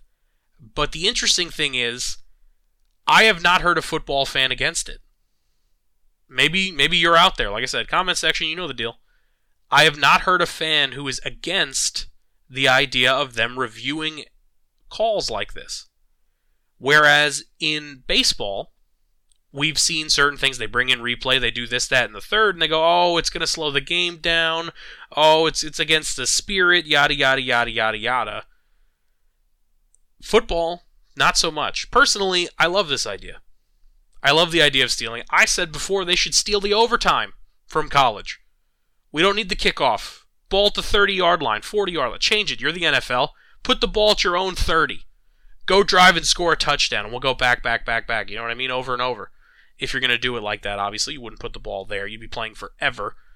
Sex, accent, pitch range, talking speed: male, American, 115-175 Hz, 195 wpm